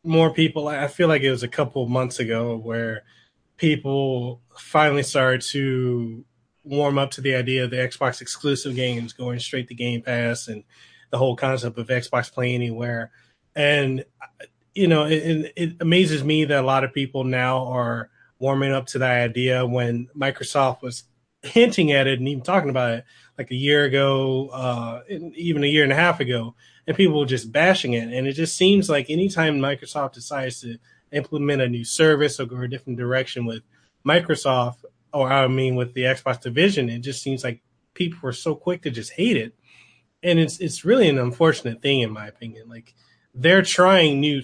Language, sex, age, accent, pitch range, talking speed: English, male, 20-39, American, 125-145 Hz, 190 wpm